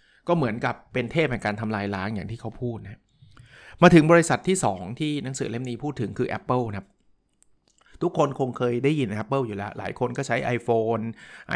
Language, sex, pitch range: Thai, male, 115-155 Hz